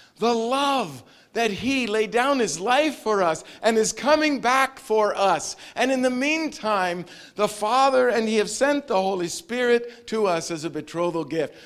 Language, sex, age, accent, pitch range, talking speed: English, male, 50-69, American, 160-230 Hz, 180 wpm